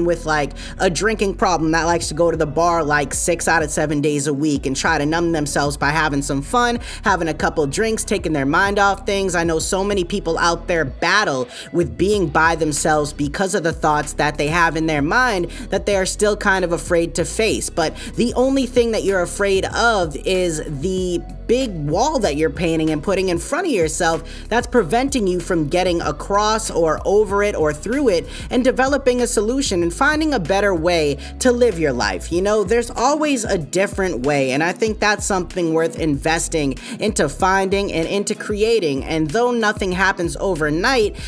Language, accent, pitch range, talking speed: English, American, 160-205 Hz, 200 wpm